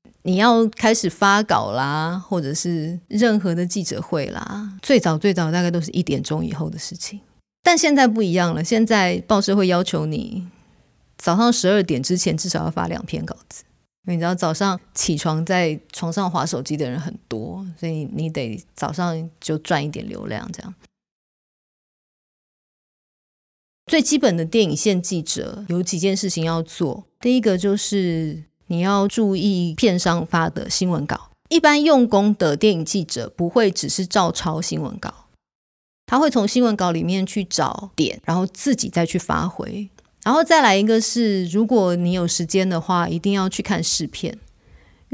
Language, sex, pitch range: Chinese, female, 165-210 Hz